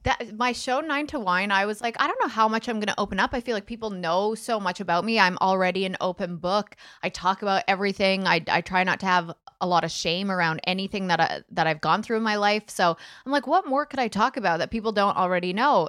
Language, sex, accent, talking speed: English, female, American, 270 wpm